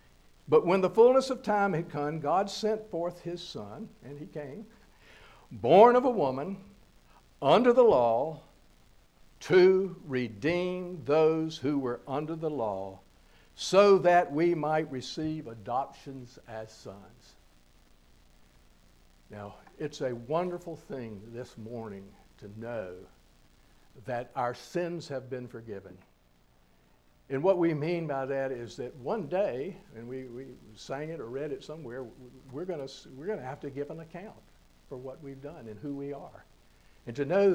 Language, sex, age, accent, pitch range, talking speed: English, male, 60-79, American, 110-175 Hz, 150 wpm